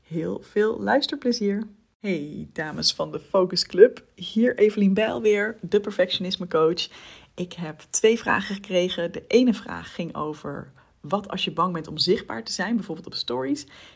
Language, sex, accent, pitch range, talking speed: Dutch, female, Dutch, 165-210 Hz, 170 wpm